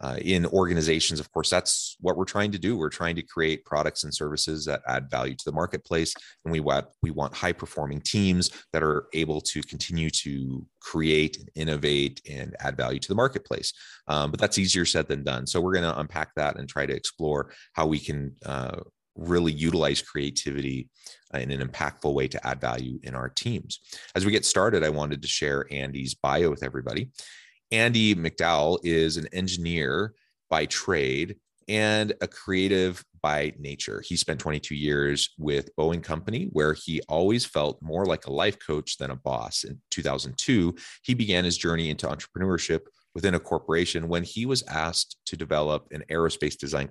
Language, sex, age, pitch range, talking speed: English, male, 30-49, 70-85 Hz, 185 wpm